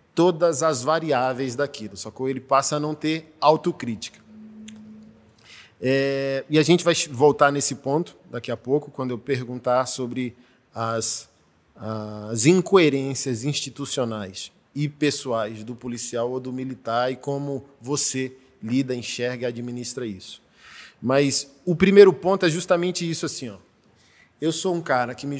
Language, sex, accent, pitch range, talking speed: Portuguese, male, Brazilian, 125-160 Hz, 145 wpm